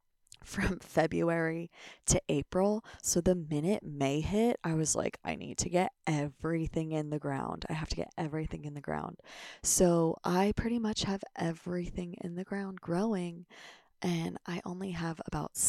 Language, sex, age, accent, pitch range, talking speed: English, female, 20-39, American, 160-190 Hz, 165 wpm